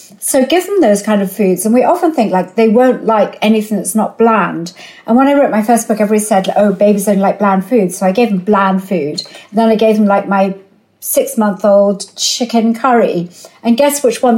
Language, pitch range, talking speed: English, 200-255 Hz, 220 wpm